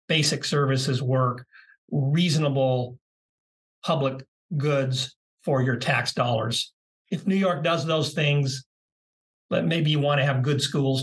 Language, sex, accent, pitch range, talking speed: English, male, American, 135-180 Hz, 130 wpm